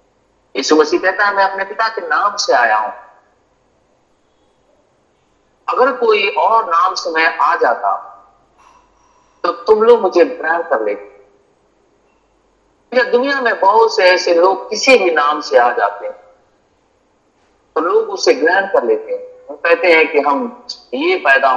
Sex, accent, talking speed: male, native, 145 wpm